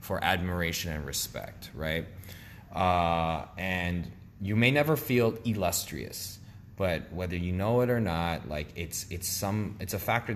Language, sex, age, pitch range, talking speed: English, male, 20-39, 85-105 Hz, 150 wpm